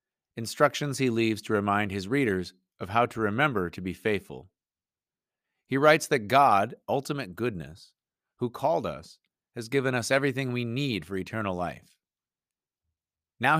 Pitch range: 95-130 Hz